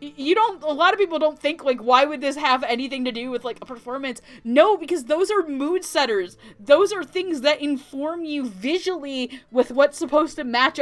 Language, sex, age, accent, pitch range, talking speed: English, female, 30-49, American, 245-320 Hz, 210 wpm